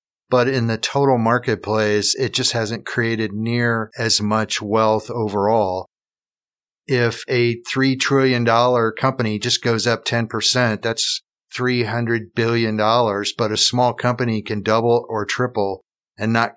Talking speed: 130 wpm